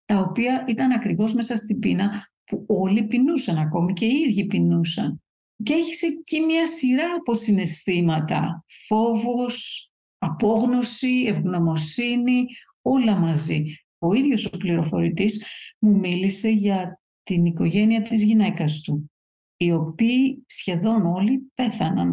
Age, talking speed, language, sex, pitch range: 50-69, 120 wpm, Greek, female, 175-235 Hz